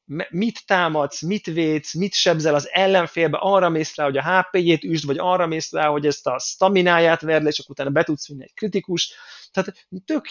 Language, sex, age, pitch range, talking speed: Hungarian, male, 30-49, 140-185 Hz, 205 wpm